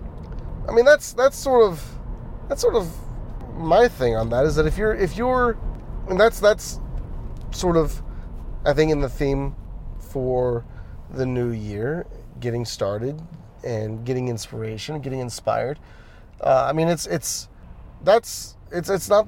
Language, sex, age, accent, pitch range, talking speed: English, male, 30-49, American, 115-155 Hz, 155 wpm